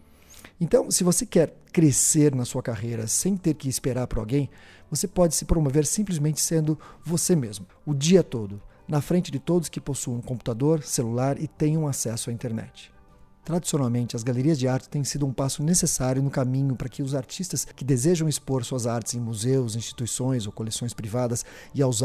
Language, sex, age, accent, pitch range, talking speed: Portuguese, male, 40-59, Brazilian, 120-155 Hz, 180 wpm